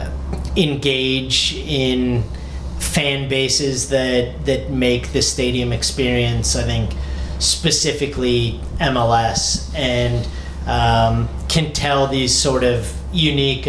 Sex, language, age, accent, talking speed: male, English, 30-49, American, 95 wpm